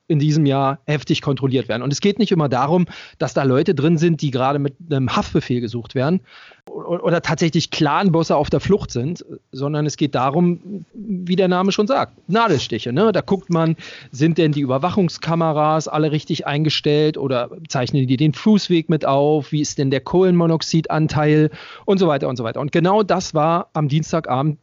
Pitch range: 140-180 Hz